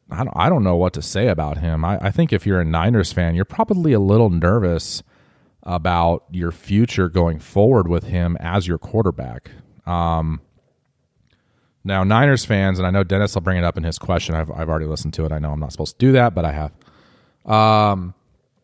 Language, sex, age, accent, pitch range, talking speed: English, male, 30-49, American, 85-110 Hz, 205 wpm